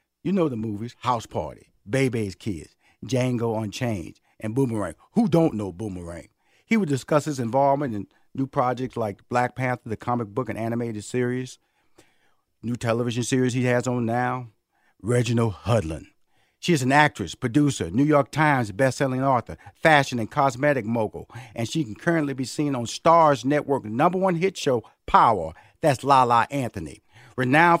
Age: 50-69